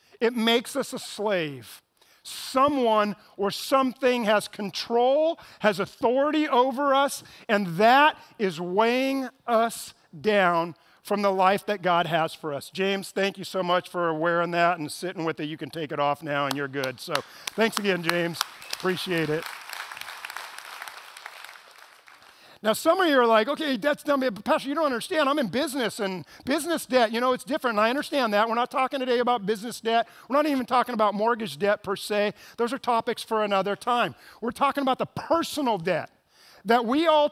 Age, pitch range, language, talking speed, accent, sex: 50-69, 190-250 Hz, English, 185 wpm, American, male